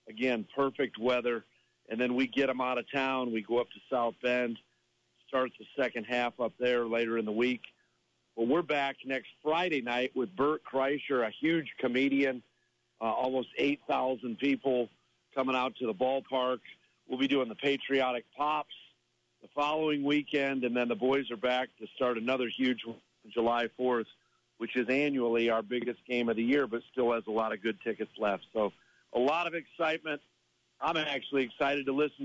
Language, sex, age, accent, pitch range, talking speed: English, male, 50-69, American, 120-135 Hz, 185 wpm